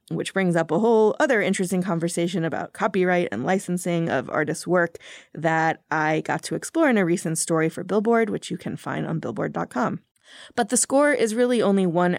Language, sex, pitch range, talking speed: English, female, 160-190 Hz, 190 wpm